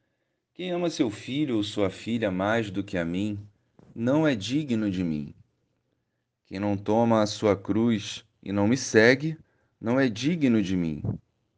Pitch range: 100-140 Hz